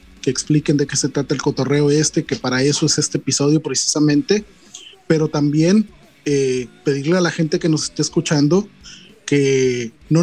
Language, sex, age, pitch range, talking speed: Spanish, male, 30-49, 140-165 Hz, 170 wpm